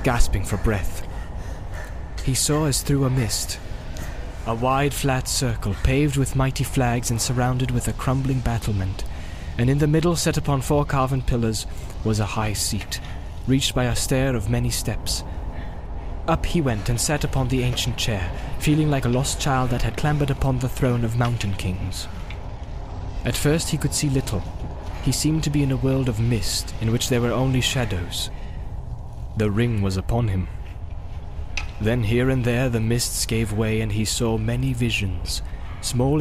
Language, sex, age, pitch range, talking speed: English, male, 20-39, 95-130 Hz, 175 wpm